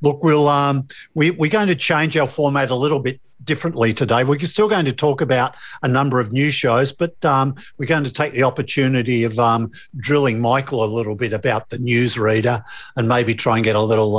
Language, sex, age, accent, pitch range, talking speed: English, male, 50-69, Australian, 115-140 Hz, 215 wpm